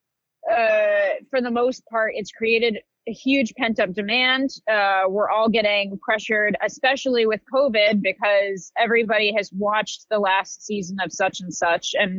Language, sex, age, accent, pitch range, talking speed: English, female, 20-39, American, 185-225 Hz, 155 wpm